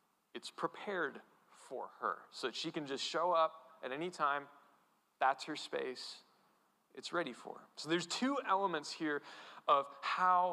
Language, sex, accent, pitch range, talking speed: English, male, American, 160-205 Hz, 160 wpm